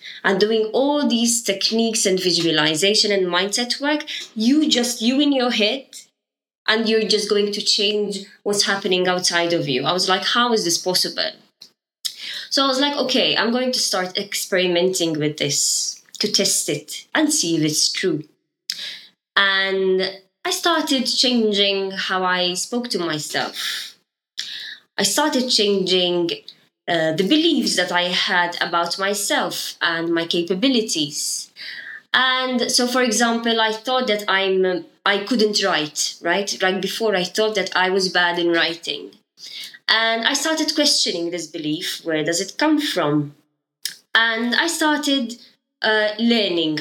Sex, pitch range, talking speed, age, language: female, 175-245 Hz, 145 wpm, 20-39, English